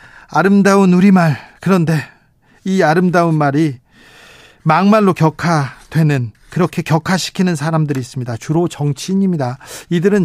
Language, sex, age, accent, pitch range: Korean, male, 40-59, native, 145-200 Hz